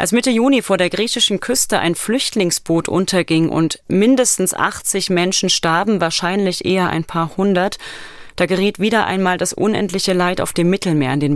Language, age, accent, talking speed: German, 30-49, German, 170 wpm